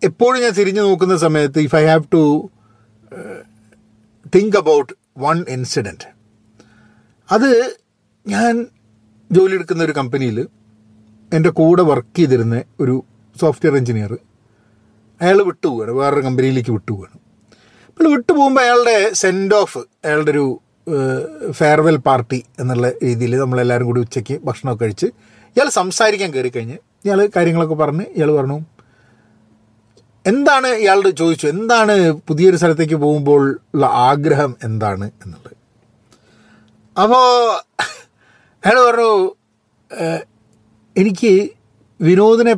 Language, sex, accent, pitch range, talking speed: Malayalam, male, native, 115-185 Hz, 100 wpm